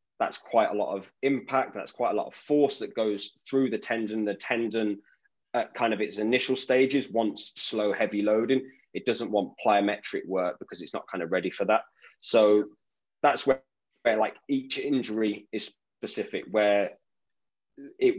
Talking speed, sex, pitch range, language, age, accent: 175 wpm, male, 105-120 Hz, English, 20-39, British